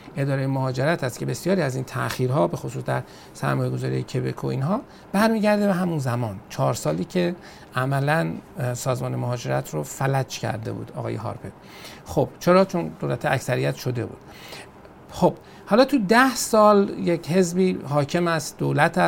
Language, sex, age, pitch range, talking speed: Persian, male, 50-69, 105-165 Hz, 155 wpm